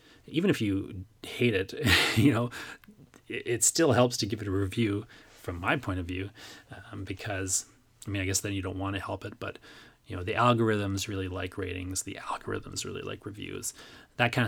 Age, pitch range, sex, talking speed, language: 30-49, 95-115 Hz, male, 200 wpm, English